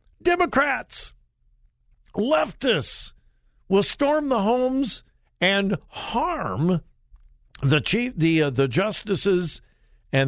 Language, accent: English, American